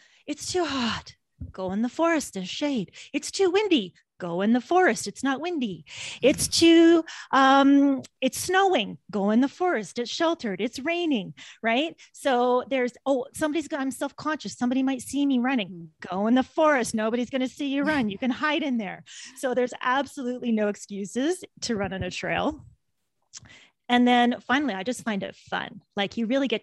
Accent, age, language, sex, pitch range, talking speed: American, 30-49, English, female, 195-265 Hz, 185 wpm